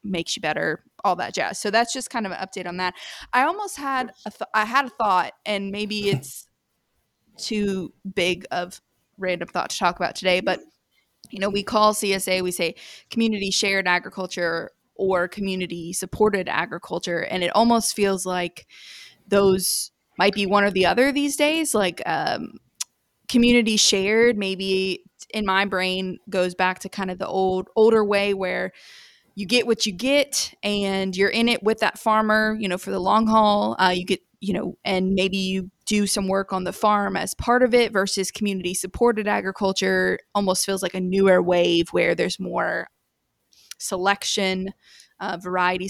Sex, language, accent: female, English, American